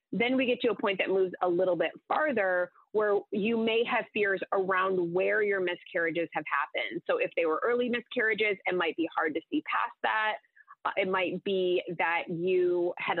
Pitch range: 180-235 Hz